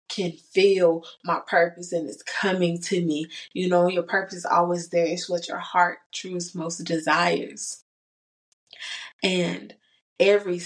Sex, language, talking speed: female, English, 140 wpm